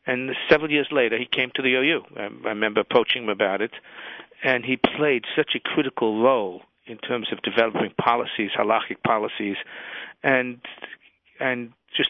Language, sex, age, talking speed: English, male, 50-69, 160 wpm